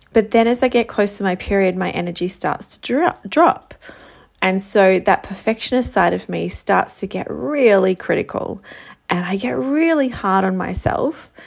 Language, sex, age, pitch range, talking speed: English, female, 30-49, 185-230 Hz, 175 wpm